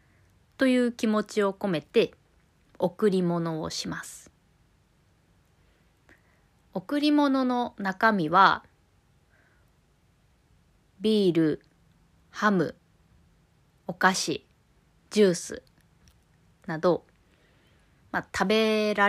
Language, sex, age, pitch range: Japanese, female, 20-39, 160-210 Hz